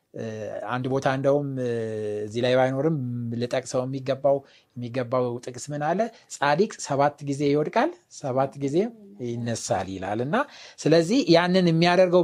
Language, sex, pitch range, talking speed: Amharic, male, 125-185 Hz, 110 wpm